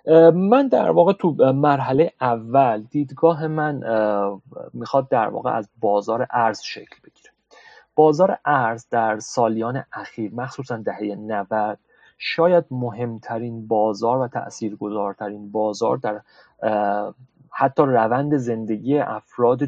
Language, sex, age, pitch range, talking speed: Persian, male, 30-49, 115-150 Hz, 105 wpm